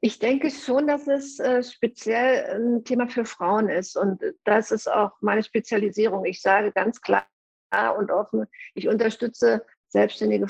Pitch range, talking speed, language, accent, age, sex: 195-230 Hz, 150 wpm, German, German, 50-69, female